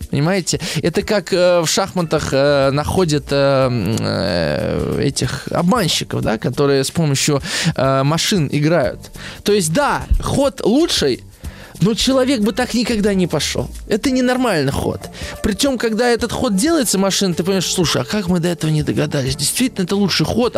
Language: Russian